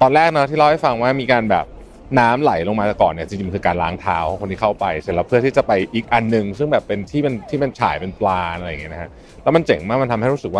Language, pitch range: Thai, 100-135 Hz